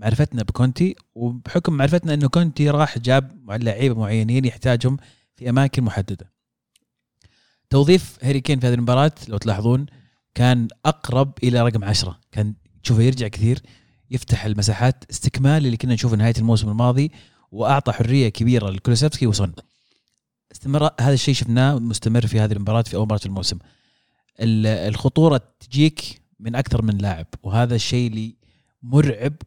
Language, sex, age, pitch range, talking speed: Arabic, male, 30-49, 110-135 Hz, 135 wpm